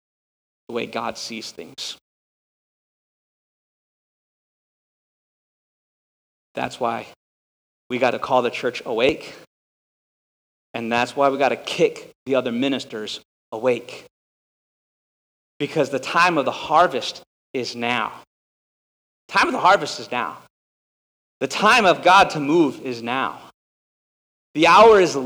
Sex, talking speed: male, 115 wpm